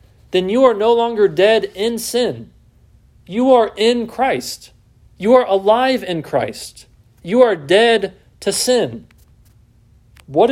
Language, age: English, 40-59